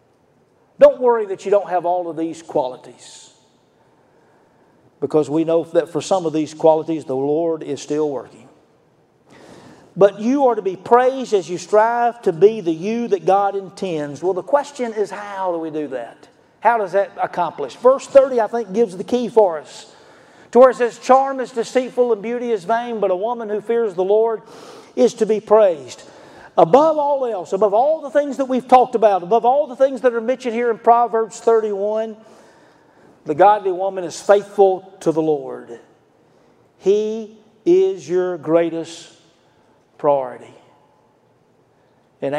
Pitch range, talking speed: 160-230 Hz, 170 wpm